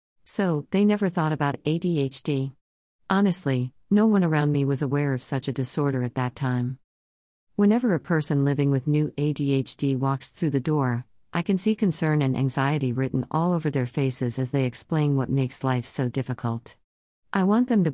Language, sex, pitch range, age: English, female, 130-155 Hz, 50-69